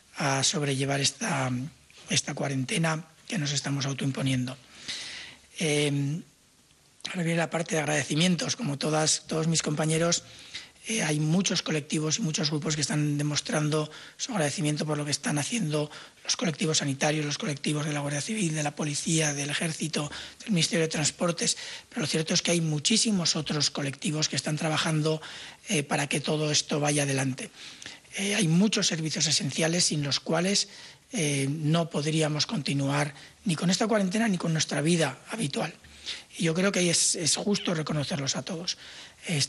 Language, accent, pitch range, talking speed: English, Spanish, 145-170 Hz, 165 wpm